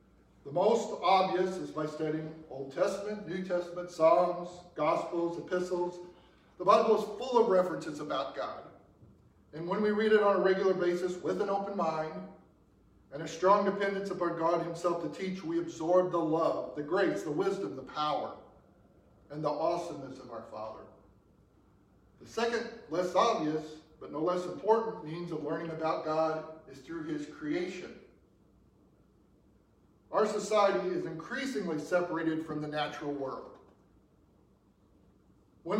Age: 40-59